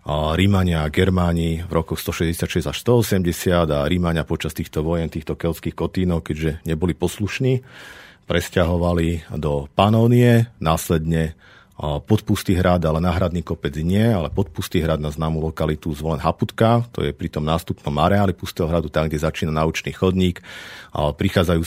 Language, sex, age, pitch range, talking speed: Slovak, male, 50-69, 80-95 Hz, 145 wpm